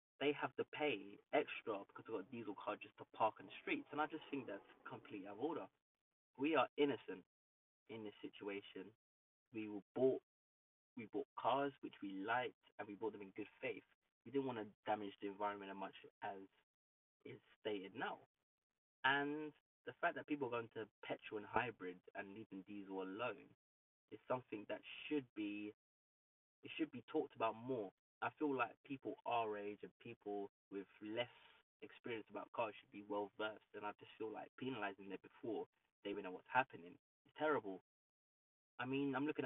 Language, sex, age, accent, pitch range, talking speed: English, male, 20-39, British, 95-130 Hz, 185 wpm